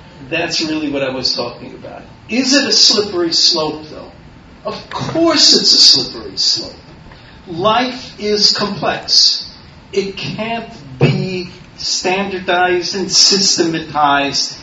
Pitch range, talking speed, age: 145-210 Hz, 115 wpm, 40-59